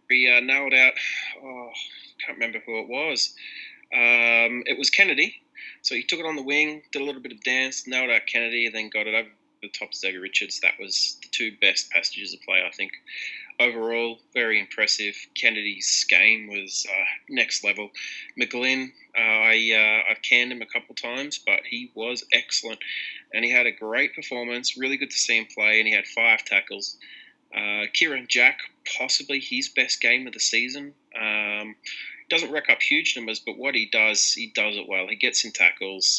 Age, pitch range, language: 20-39, 110-130 Hz, English